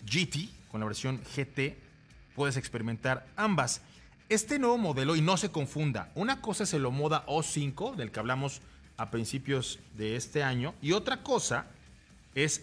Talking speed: 155 wpm